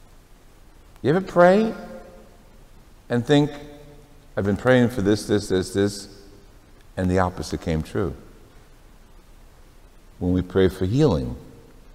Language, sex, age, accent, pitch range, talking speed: English, male, 60-79, American, 85-120 Hz, 115 wpm